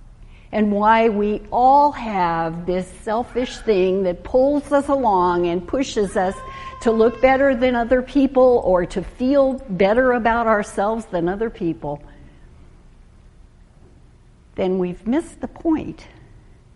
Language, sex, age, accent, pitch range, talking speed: English, female, 60-79, American, 180-265 Hz, 125 wpm